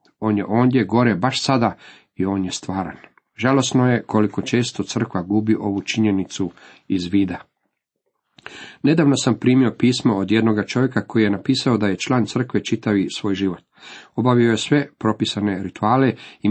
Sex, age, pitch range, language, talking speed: male, 40-59, 105-130 Hz, Croatian, 155 wpm